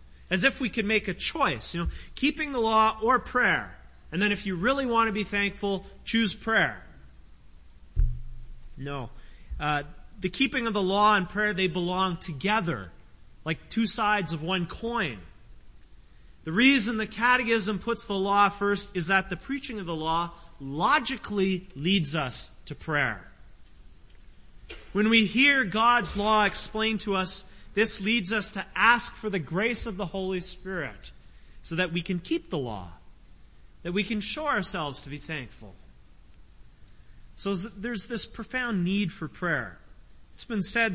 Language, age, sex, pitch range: English, 30-49, male, 145-220 Hz